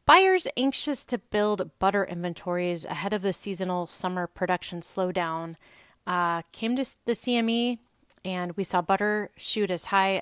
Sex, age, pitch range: female, 30-49, 180-230 Hz